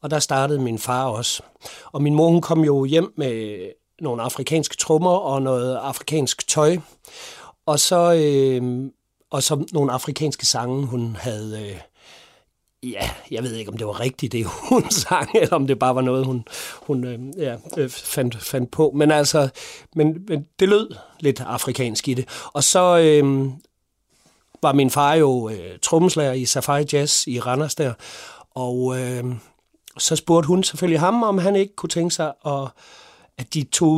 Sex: male